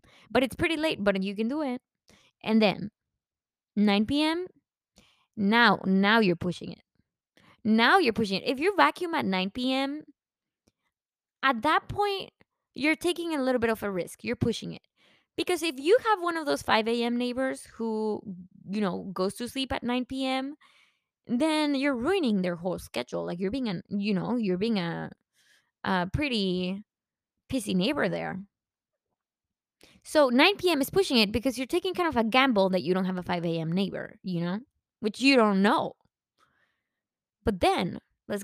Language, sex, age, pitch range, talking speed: Spanish, female, 20-39, 195-285 Hz, 175 wpm